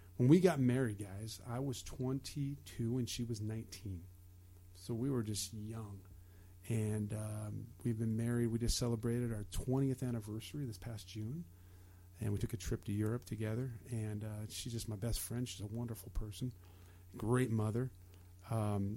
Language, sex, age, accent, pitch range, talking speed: English, male, 40-59, American, 100-120 Hz, 170 wpm